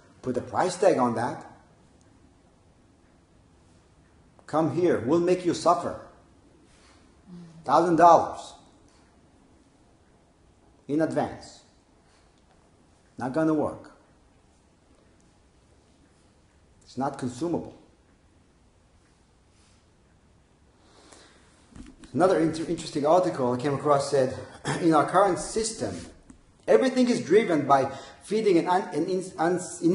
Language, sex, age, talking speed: English, male, 50-69, 80 wpm